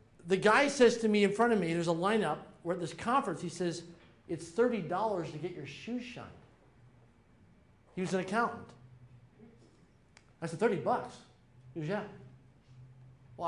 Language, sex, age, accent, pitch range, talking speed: English, male, 40-59, American, 145-225 Hz, 165 wpm